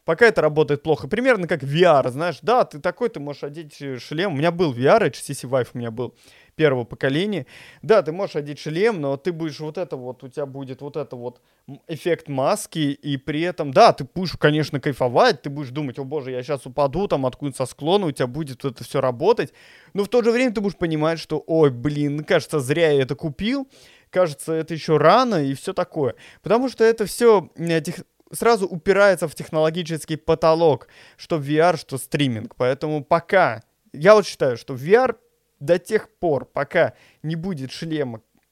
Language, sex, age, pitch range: Russian, male, 20-39, 135-170 Hz